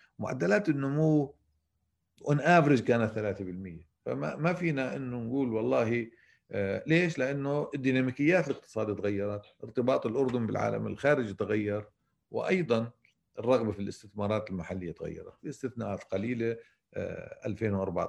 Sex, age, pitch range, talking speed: male, 40-59, 95-130 Hz, 100 wpm